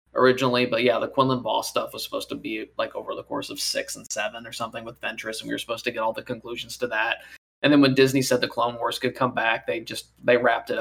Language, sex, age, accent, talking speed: English, male, 20-39, American, 280 wpm